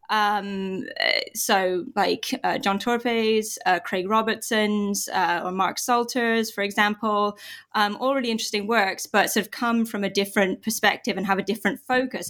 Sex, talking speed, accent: female, 160 wpm, British